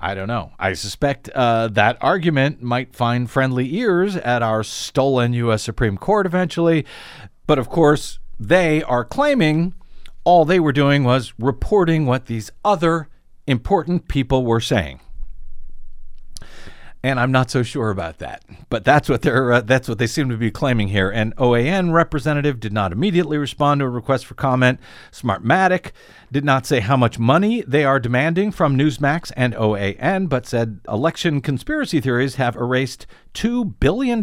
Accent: American